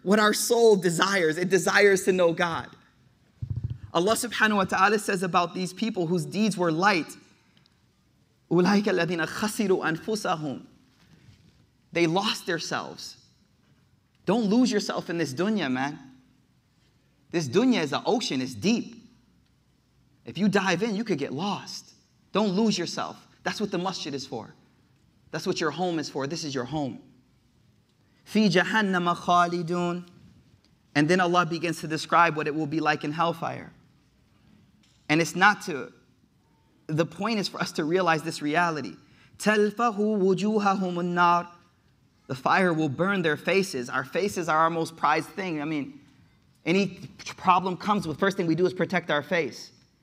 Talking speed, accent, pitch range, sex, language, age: 150 wpm, American, 155-195 Hz, male, English, 30-49